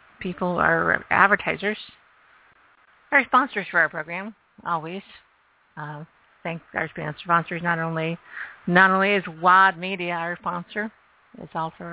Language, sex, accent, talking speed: English, female, American, 130 wpm